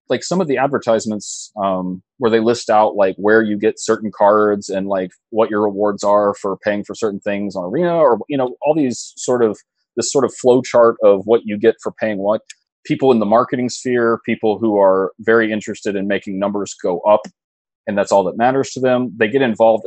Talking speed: 220 wpm